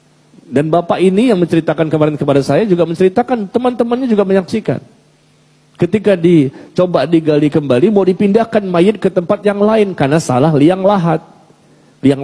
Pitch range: 155-240 Hz